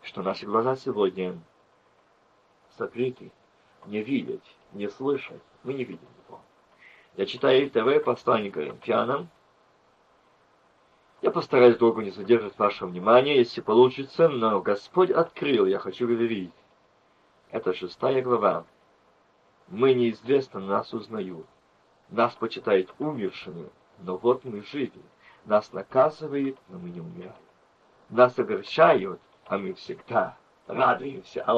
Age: 50-69